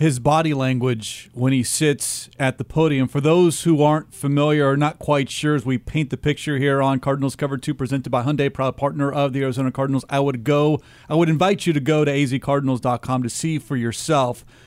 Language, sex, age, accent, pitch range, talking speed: English, male, 40-59, American, 135-160 Hz, 215 wpm